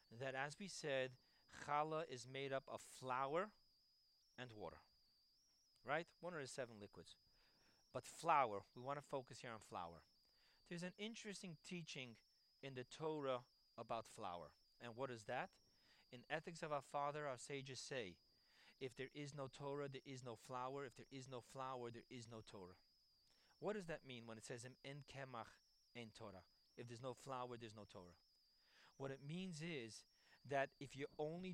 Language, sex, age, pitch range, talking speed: English, male, 40-59, 125-160 Hz, 175 wpm